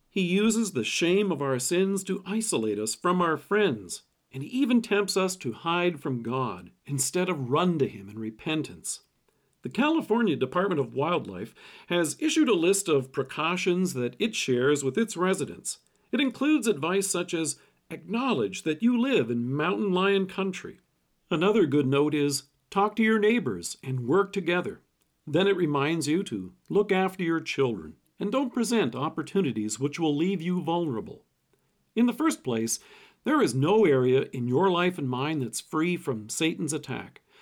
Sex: male